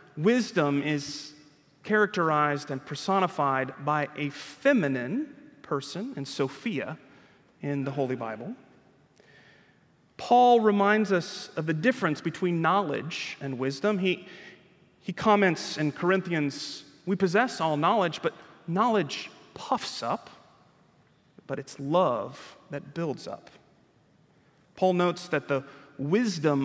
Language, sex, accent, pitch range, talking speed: English, male, American, 145-195 Hz, 110 wpm